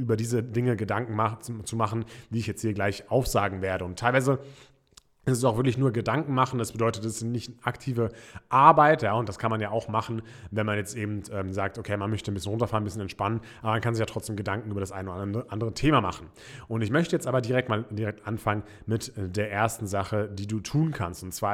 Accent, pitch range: German, 110-130 Hz